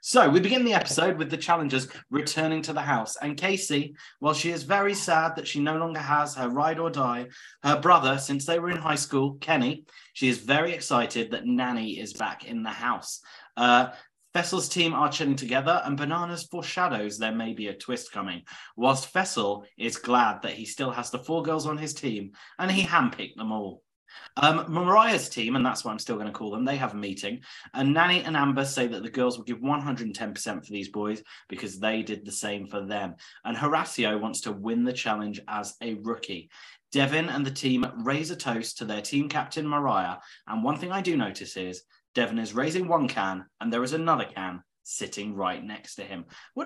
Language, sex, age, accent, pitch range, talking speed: English, male, 30-49, British, 110-160 Hz, 210 wpm